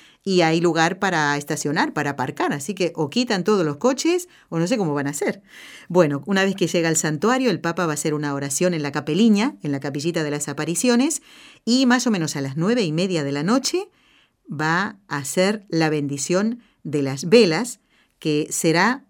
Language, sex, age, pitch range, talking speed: Spanish, female, 50-69, 150-210 Hz, 205 wpm